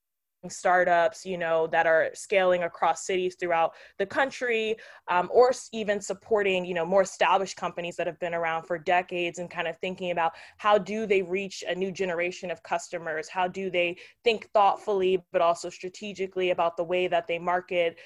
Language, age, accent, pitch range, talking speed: English, 20-39, American, 170-195 Hz, 180 wpm